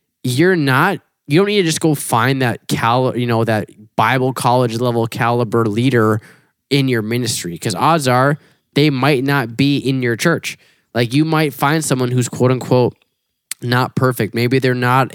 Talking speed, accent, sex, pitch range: 180 wpm, American, male, 110-130 Hz